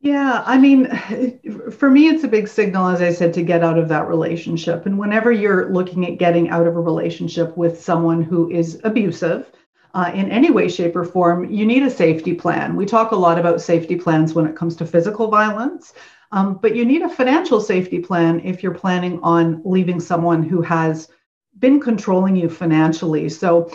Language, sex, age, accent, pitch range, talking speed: English, female, 40-59, American, 170-220 Hz, 200 wpm